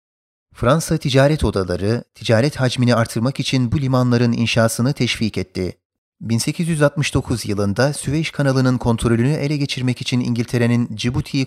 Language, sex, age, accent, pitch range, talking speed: Turkish, male, 30-49, native, 110-130 Hz, 115 wpm